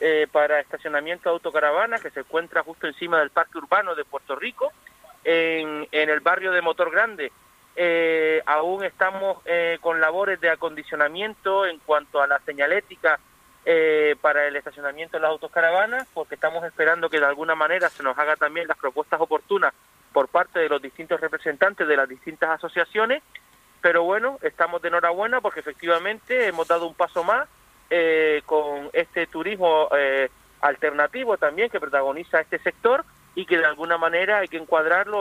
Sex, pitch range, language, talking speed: male, 155-185 Hz, Spanish, 165 wpm